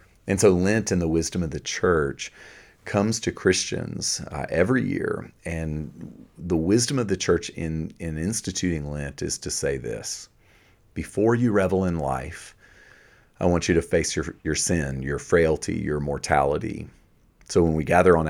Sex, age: male, 40-59